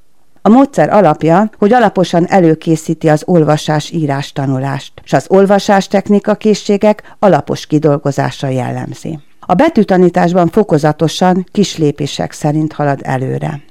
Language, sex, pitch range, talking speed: Hungarian, female, 150-195 Hz, 105 wpm